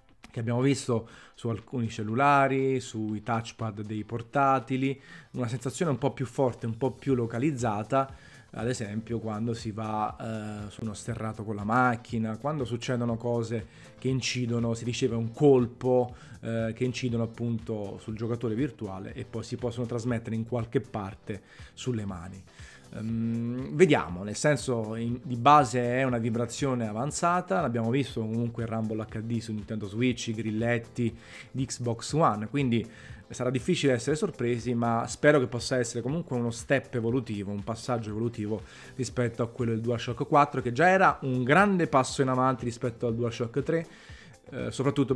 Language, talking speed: Italian, 155 wpm